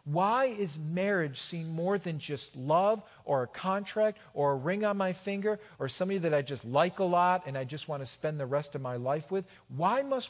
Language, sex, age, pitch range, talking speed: English, male, 40-59, 155-225 Hz, 225 wpm